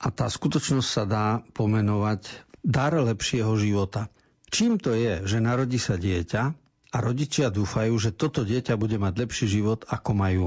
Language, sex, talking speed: Slovak, male, 160 wpm